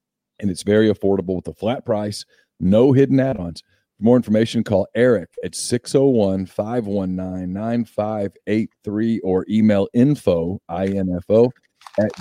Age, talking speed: 40-59, 115 wpm